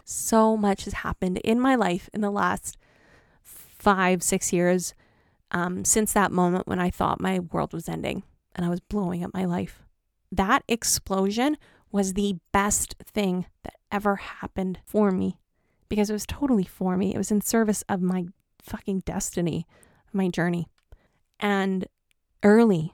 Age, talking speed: 20-39, 155 wpm